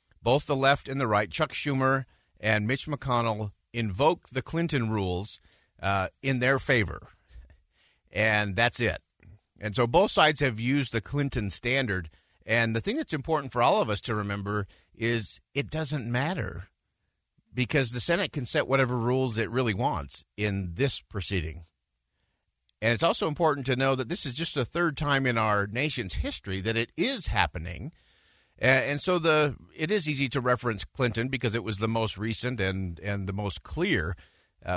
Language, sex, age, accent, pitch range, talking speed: English, male, 50-69, American, 100-135 Hz, 175 wpm